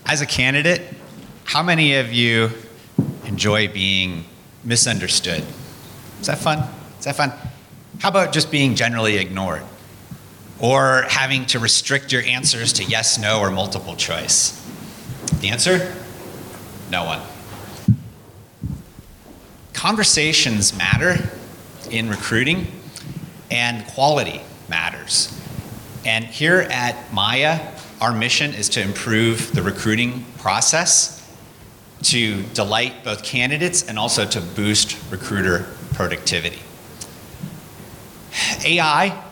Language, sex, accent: English, male, American